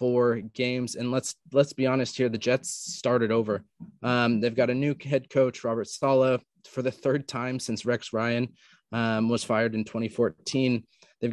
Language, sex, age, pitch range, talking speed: English, male, 20-39, 110-130 Hz, 180 wpm